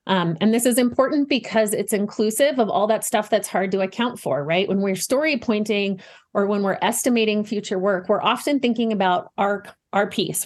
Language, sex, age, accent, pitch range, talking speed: English, female, 30-49, American, 185-225 Hz, 200 wpm